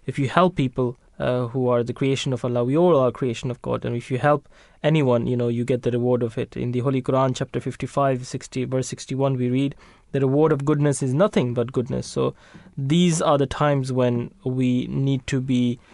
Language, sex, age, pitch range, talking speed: English, male, 20-39, 120-135 Hz, 220 wpm